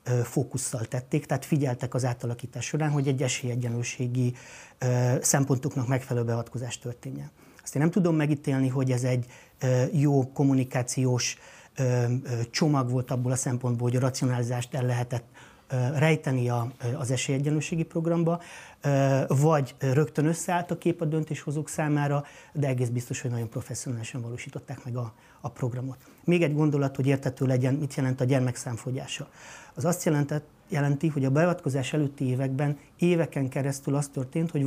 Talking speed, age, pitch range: 140 wpm, 30-49, 125-150 Hz